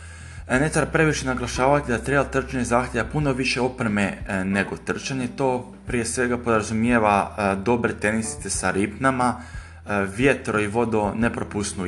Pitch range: 100-130 Hz